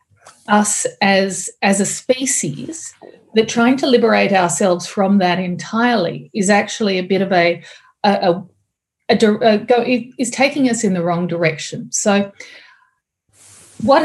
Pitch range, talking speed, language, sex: 185-240 Hz, 150 wpm, English, female